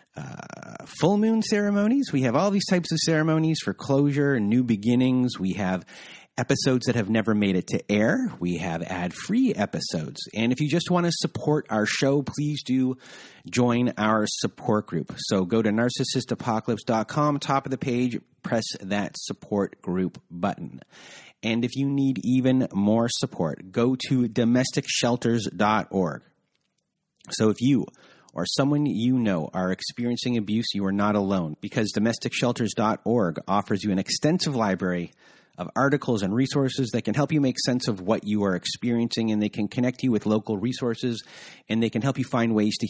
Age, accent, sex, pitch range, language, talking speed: 30-49, American, male, 105-140 Hz, English, 170 wpm